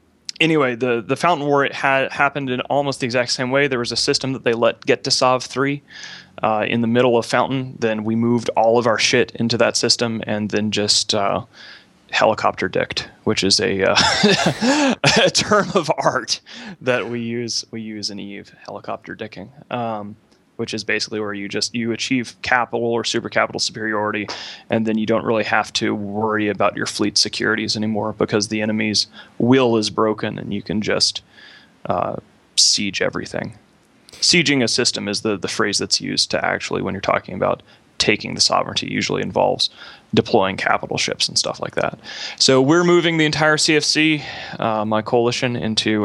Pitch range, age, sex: 110-140 Hz, 20-39, male